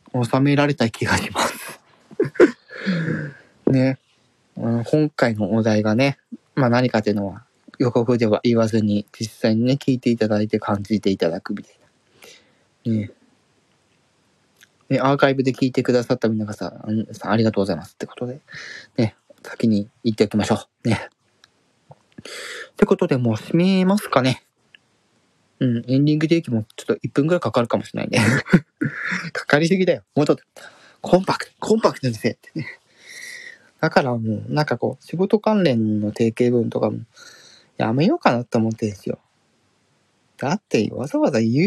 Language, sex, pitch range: Japanese, male, 110-145 Hz